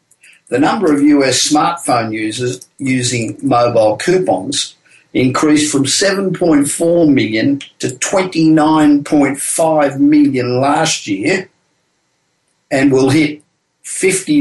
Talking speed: 90 wpm